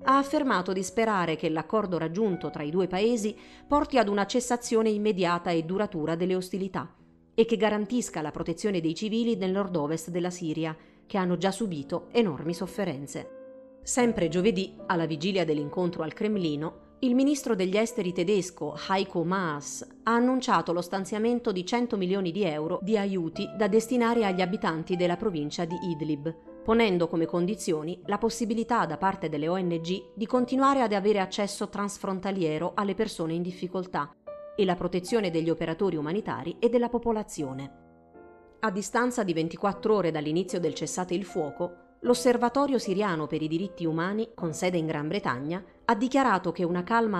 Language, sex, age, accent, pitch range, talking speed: Italian, female, 30-49, native, 165-220 Hz, 160 wpm